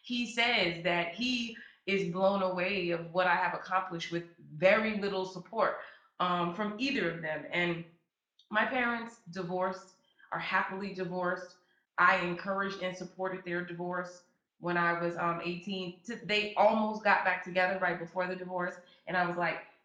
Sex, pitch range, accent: female, 175-195 Hz, American